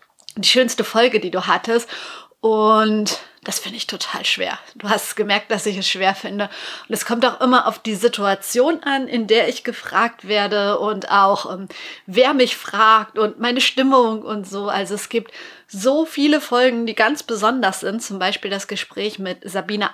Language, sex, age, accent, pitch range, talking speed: German, female, 30-49, German, 195-240 Hz, 185 wpm